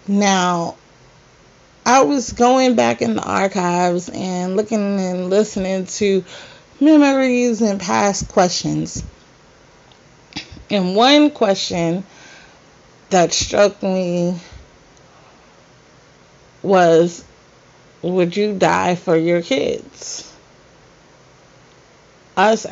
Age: 30-49